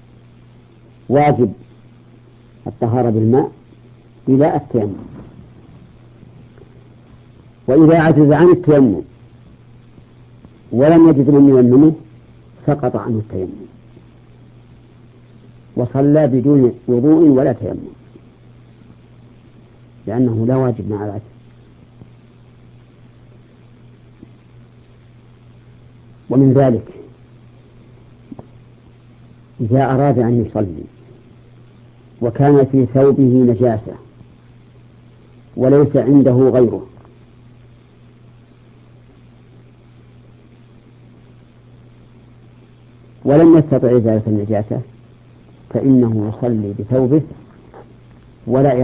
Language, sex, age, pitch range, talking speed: Arabic, female, 50-69, 120-125 Hz, 60 wpm